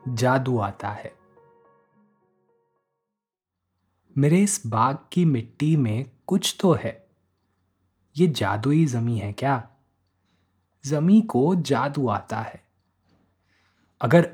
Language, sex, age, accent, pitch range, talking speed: Hindi, male, 20-39, native, 100-155 Hz, 100 wpm